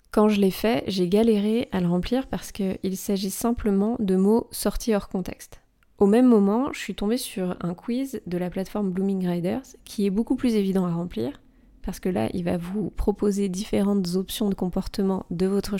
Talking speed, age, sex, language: 200 wpm, 20-39, female, French